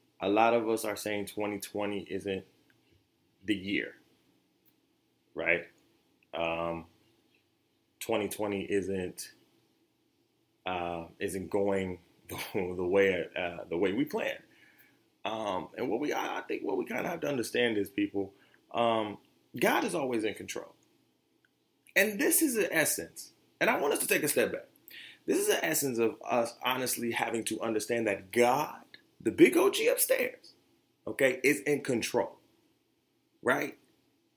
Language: English